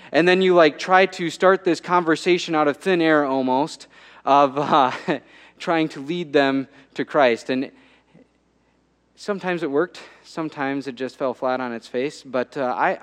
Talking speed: 170 wpm